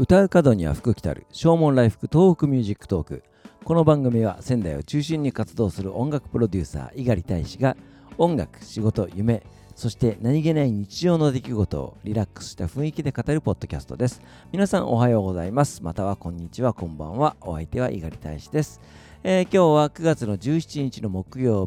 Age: 50-69